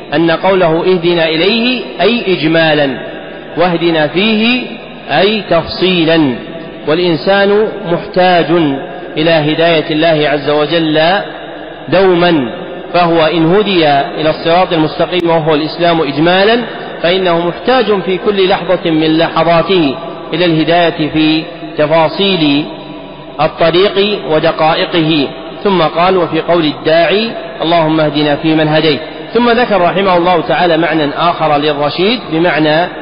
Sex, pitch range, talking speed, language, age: male, 155-180 Hz, 105 wpm, Arabic, 40-59